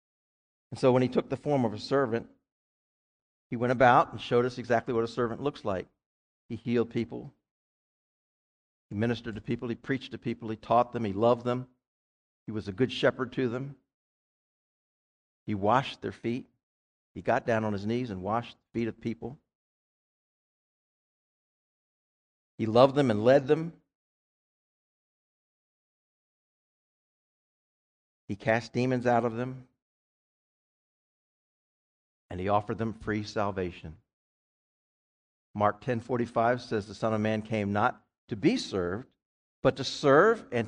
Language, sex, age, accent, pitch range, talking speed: English, male, 50-69, American, 100-135 Hz, 140 wpm